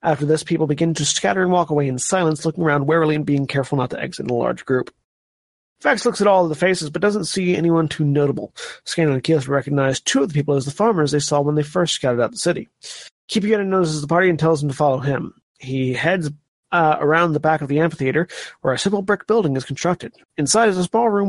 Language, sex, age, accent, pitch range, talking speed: English, male, 30-49, American, 140-180 Hz, 245 wpm